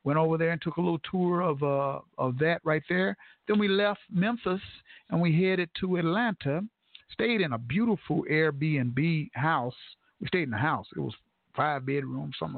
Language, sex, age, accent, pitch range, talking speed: English, male, 50-69, American, 145-180 Hz, 185 wpm